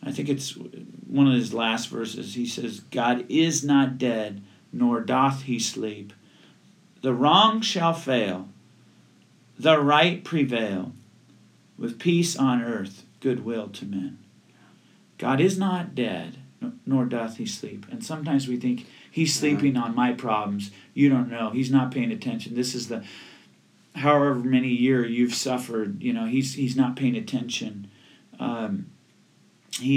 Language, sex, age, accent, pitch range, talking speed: English, male, 40-59, American, 110-145 Hz, 150 wpm